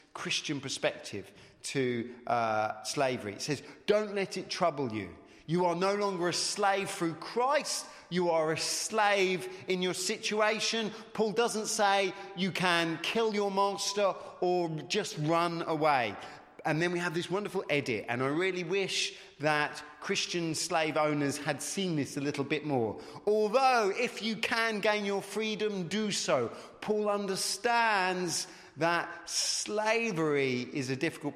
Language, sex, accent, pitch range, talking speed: English, male, British, 140-195 Hz, 145 wpm